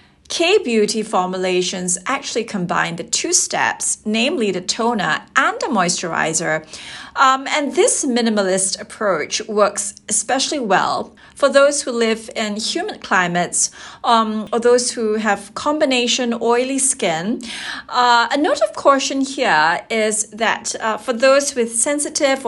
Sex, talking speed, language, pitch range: female, 130 wpm, English, 190-255 Hz